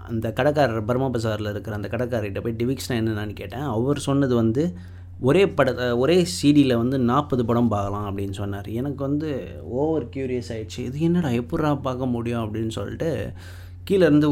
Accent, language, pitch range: native, Tamil, 110-135 Hz